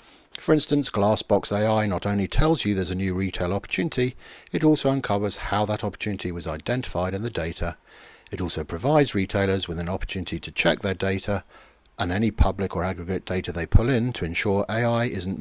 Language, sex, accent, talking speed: English, male, British, 185 wpm